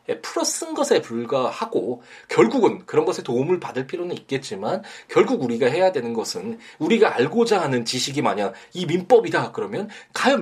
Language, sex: Korean, male